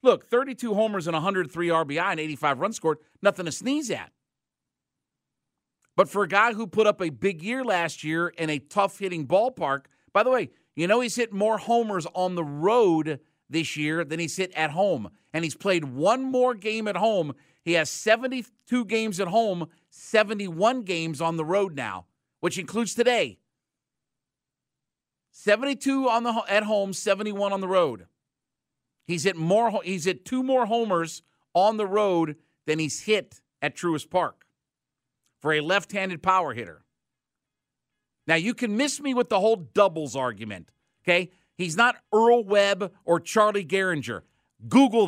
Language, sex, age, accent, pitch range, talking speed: English, male, 50-69, American, 165-220 Hz, 160 wpm